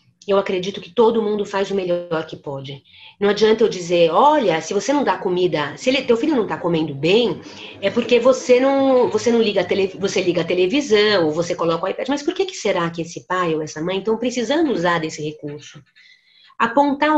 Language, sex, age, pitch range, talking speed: English, female, 30-49, 170-225 Hz, 215 wpm